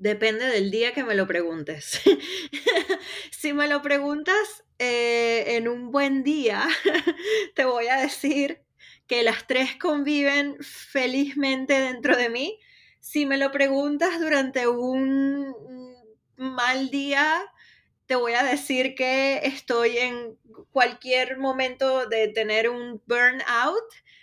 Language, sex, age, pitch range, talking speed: Spanish, female, 20-39, 230-280 Hz, 120 wpm